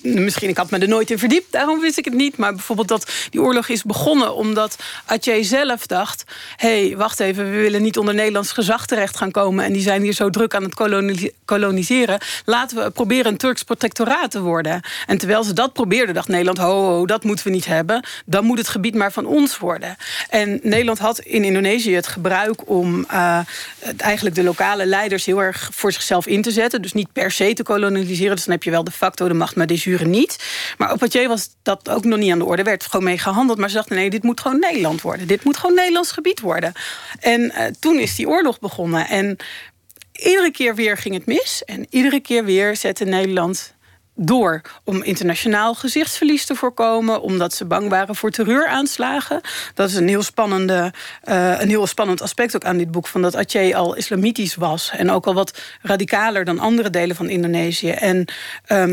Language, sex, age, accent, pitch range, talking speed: Dutch, female, 40-59, Dutch, 190-235 Hz, 215 wpm